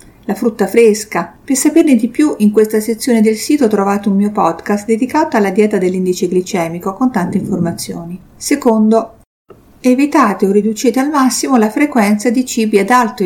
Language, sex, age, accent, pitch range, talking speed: Italian, female, 50-69, native, 185-245 Hz, 165 wpm